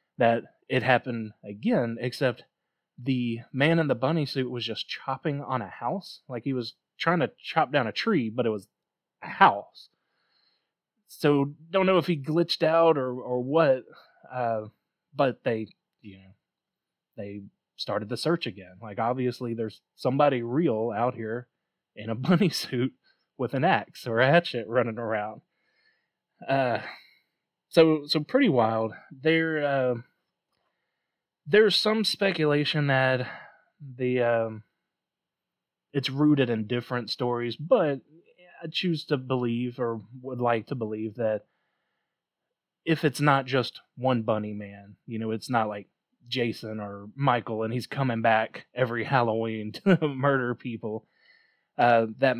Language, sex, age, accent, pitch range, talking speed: English, male, 20-39, American, 115-145 Hz, 145 wpm